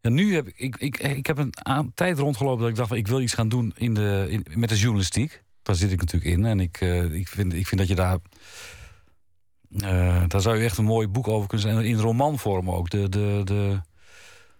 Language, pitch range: Dutch, 95-125 Hz